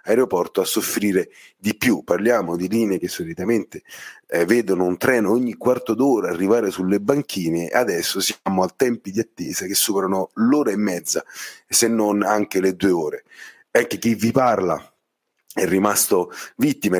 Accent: native